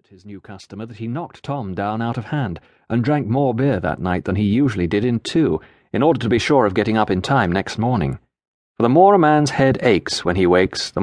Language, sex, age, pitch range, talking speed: English, male, 40-59, 100-135 Hz, 250 wpm